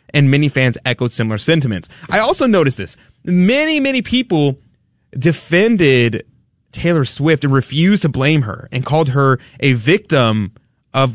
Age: 20-39